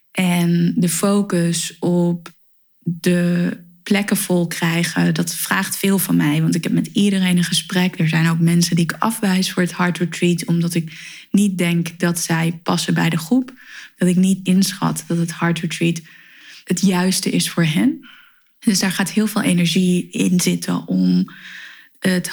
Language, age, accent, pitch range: Dutch, 20-39, Dutch, 175-205 Hz